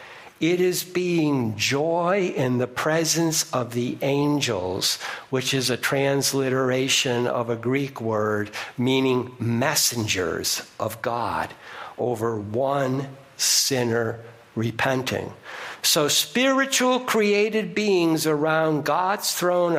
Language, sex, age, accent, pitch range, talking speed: English, male, 60-79, American, 135-210 Hz, 100 wpm